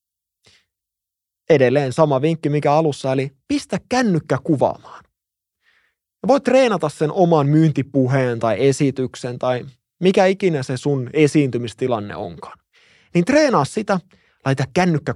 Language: Finnish